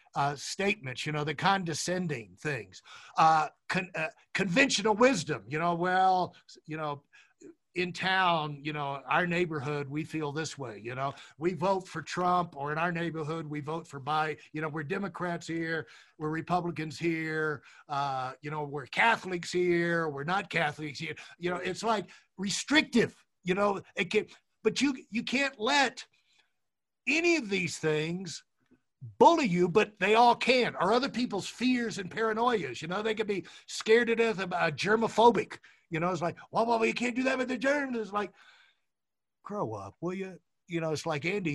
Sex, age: male, 50-69